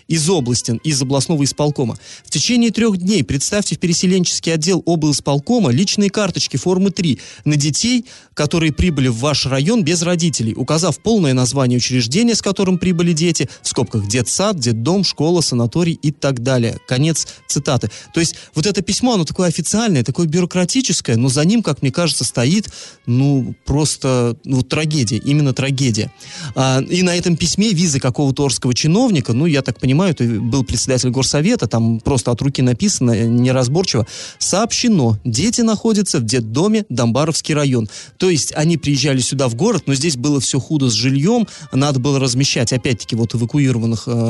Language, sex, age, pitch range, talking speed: Russian, male, 30-49, 125-175 Hz, 160 wpm